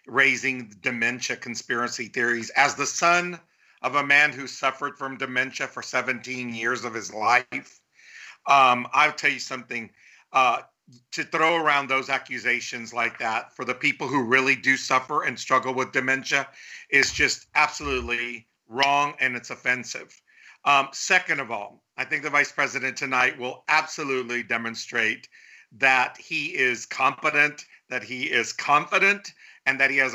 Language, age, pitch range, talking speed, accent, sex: English, 50-69, 125-155 Hz, 150 wpm, American, male